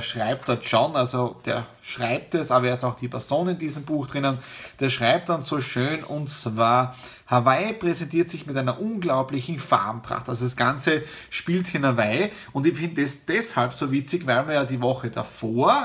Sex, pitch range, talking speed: male, 125-160 Hz, 190 wpm